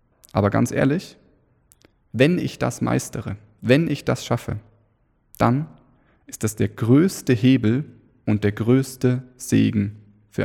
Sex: male